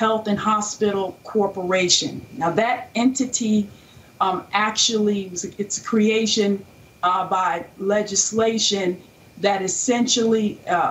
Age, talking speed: 40-59, 110 wpm